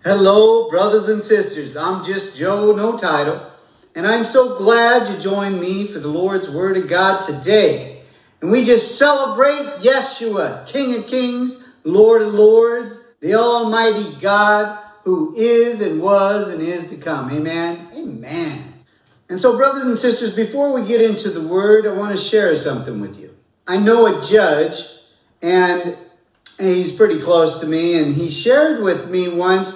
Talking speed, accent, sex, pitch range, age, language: 165 wpm, American, male, 180-235 Hz, 50-69, English